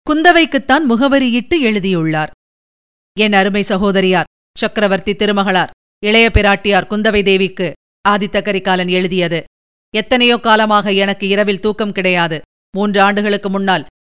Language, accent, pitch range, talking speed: Tamil, native, 190-210 Hz, 95 wpm